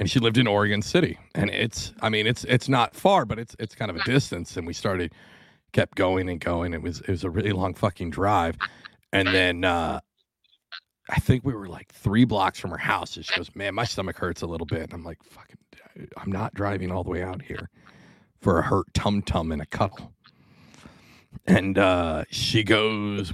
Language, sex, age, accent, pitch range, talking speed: English, male, 30-49, American, 95-120 Hz, 215 wpm